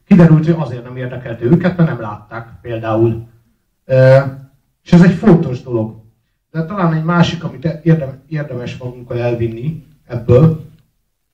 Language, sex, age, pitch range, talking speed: Hungarian, male, 60-79, 110-135 Hz, 125 wpm